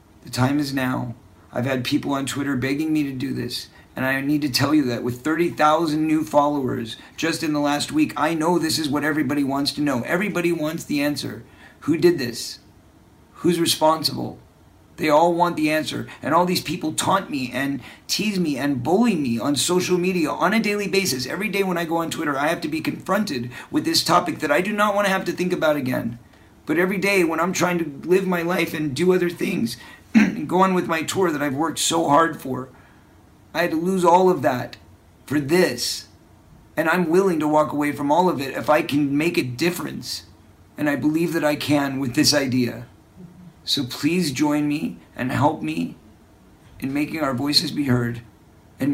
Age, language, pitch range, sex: 50-69, English, 130-170 Hz, male